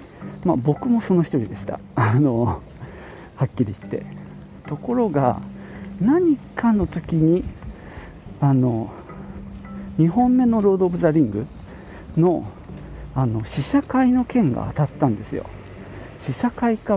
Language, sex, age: Japanese, male, 50-69